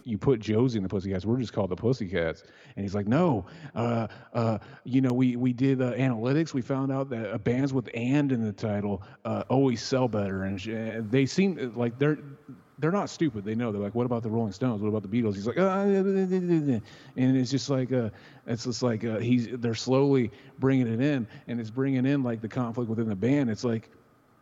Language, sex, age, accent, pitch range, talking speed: English, male, 30-49, American, 105-130 Hz, 220 wpm